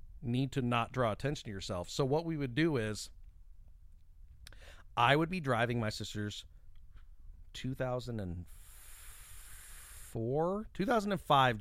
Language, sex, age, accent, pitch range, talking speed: English, male, 40-59, American, 95-140 Hz, 110 wpm